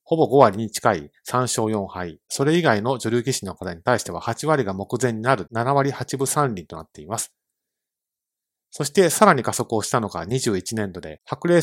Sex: male